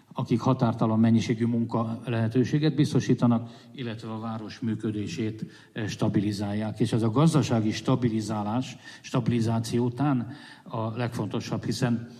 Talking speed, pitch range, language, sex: 100 wpm, 110-130 Hz, Hungarian, male